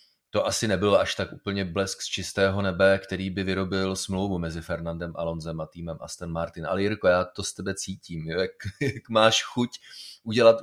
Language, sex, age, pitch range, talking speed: Czech, male, 30-49, 90-100 Hz, 190 wpm